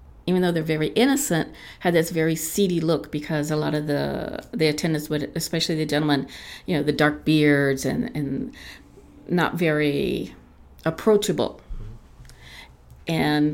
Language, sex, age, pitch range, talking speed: English, female, 50-69, 140-165 Hz, 140 wpm